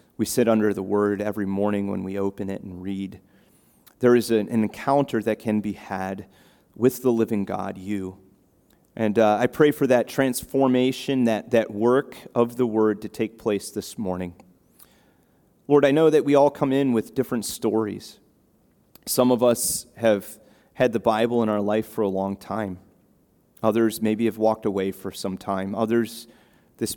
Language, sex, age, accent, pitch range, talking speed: English, male, 30-49, American, 100-130 Hz, 175 wpm